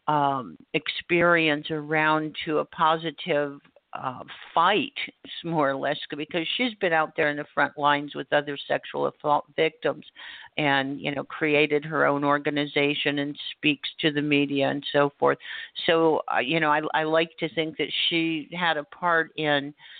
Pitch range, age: 145-180 Hz, 50-69